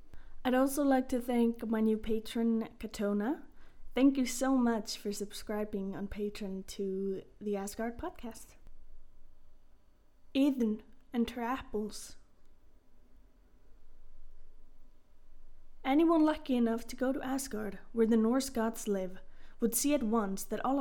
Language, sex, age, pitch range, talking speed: English, female, 20-39, 200-250 Hz, 120 wpm